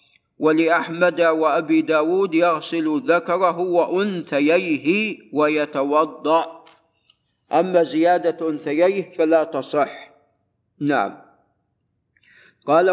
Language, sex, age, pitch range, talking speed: Arabic, male, 50-69, 155-180 Hz, 65 wpm